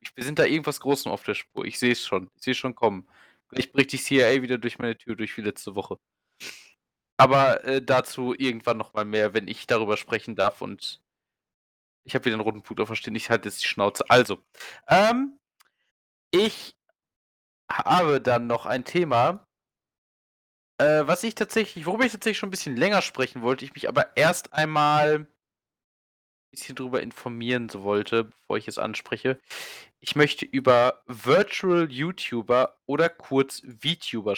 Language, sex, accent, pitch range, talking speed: German, male, German, 115-155 Hz, 170 wpm